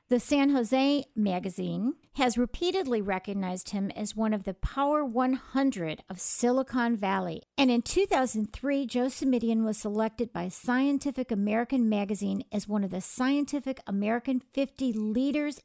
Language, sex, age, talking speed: English, female, 50-69, 140 wpm